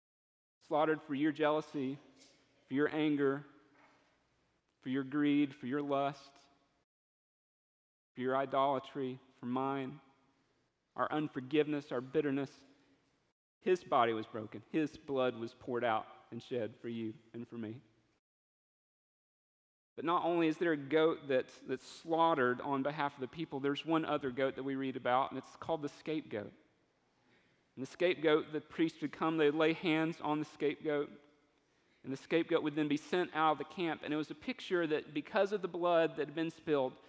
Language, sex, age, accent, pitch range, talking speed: English, male, 40-59, American, 130-155 Hz, 170 wpm